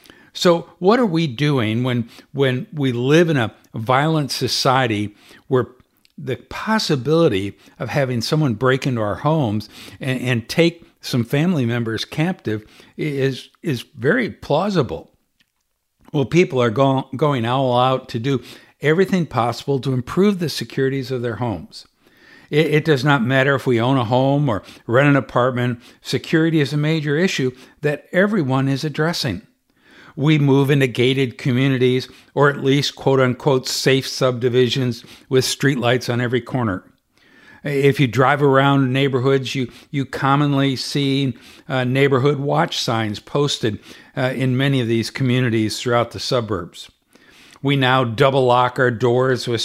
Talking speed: 145 wpm